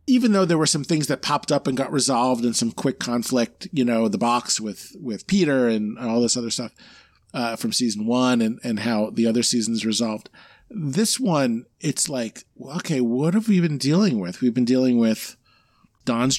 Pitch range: 120-180 Hz